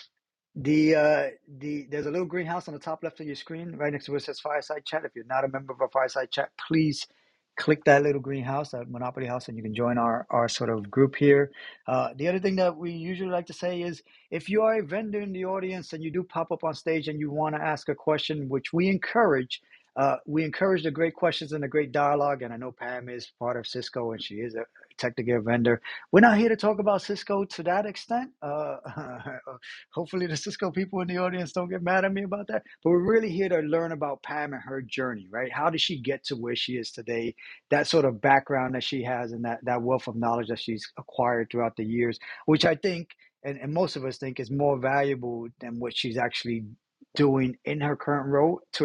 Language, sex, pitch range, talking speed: English, male, 125-170 Hz, 245 wpm